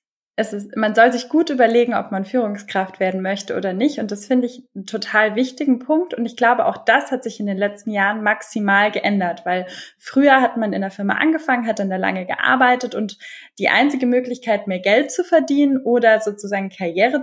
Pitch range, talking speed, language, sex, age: 200-260 Hz, 200 wpm, German, female, 10-29